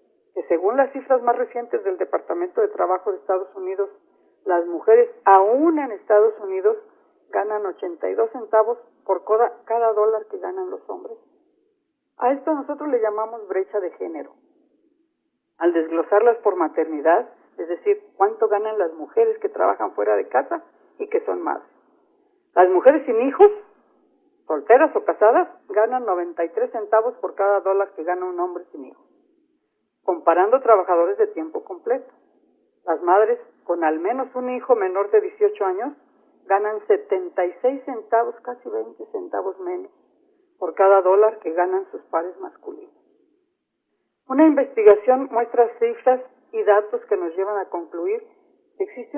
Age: 50-69